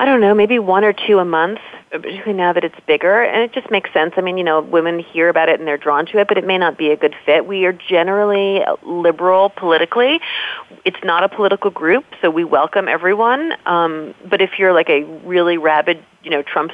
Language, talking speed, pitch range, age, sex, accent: English, 235 wpm, 160-210 Hz, 30-49, female, American